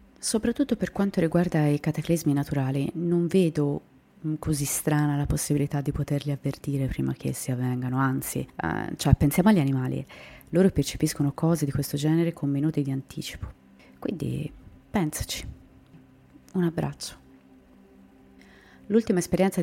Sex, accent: female, native